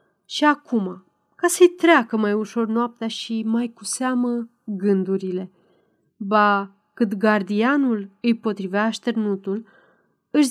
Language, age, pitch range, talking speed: Romanian, 30-49, 200-245 Hz, 115 wpm